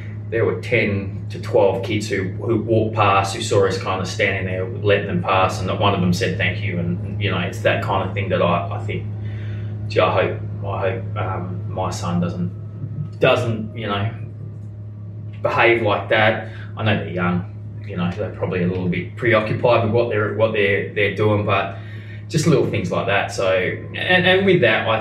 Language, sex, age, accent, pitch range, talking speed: English, male, 20-39, Australian, 100-110 Hz, 205 wpm